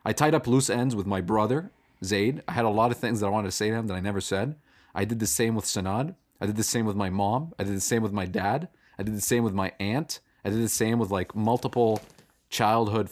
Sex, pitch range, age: male, 105-135 Hz, 30-49